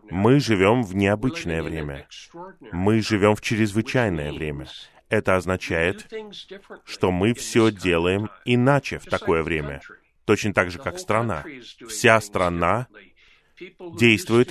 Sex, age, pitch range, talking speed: male, 20-39, 95-125 Hz, 115 wpm